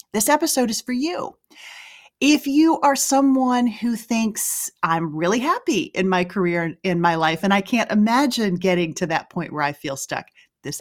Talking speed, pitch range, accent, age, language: 190 wpm, 170-245 Hz, American, 40-59, English